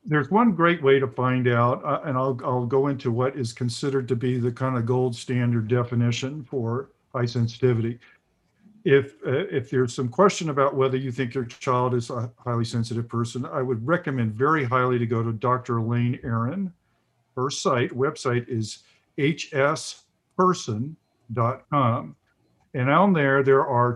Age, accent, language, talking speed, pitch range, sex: 50-69, American, English, 165 wpm, 120-140 Hz, male